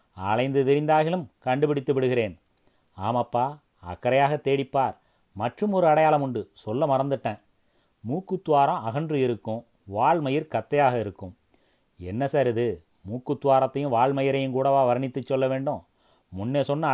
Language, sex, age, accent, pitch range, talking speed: Tamil, male, 30-49, native, 120-155 Hz, 105 wpm